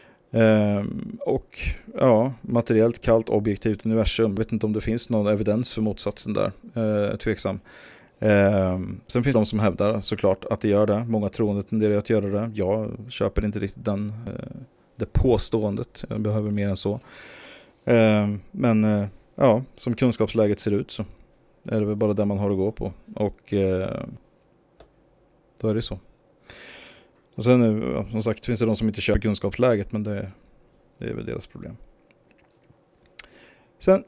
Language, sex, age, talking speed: English, male, 30-49, 170 wpm